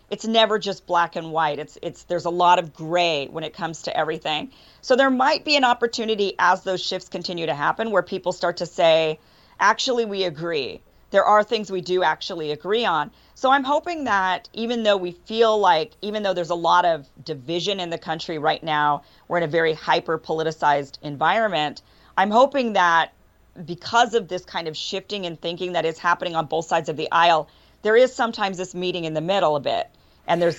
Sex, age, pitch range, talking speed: female, 40-59, 160-205 Hz, 205 wpm